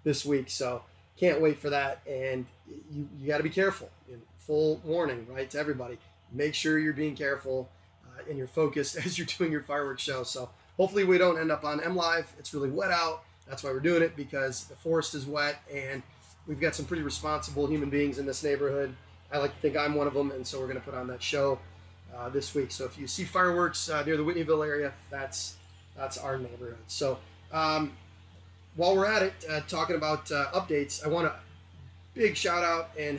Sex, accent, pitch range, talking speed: male, American, 125-155 Hz, 220 wpm